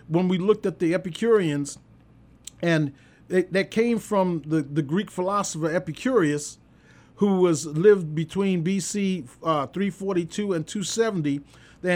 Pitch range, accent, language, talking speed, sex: 160-205 Hz, American, English, 125 wpm, male